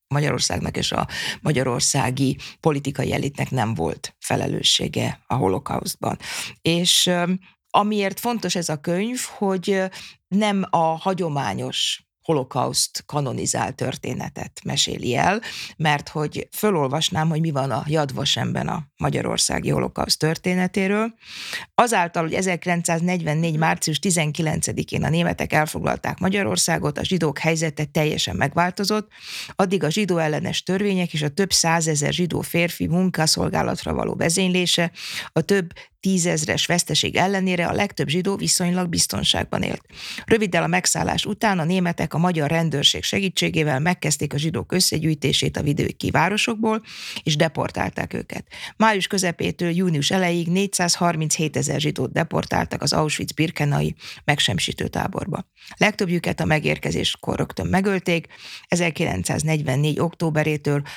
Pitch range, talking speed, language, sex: 150-185 Hz, 115 wpm, Hungarian, female